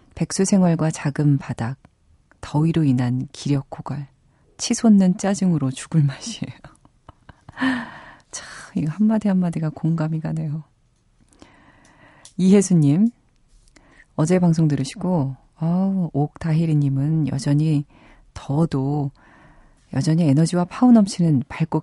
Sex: female